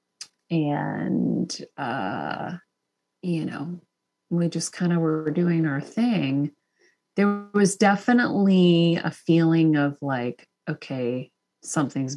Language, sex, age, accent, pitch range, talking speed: English, female, 30-49, American, 145-170 Hz, 105 wpm